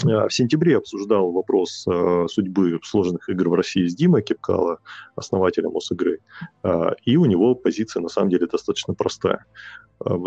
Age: 30-49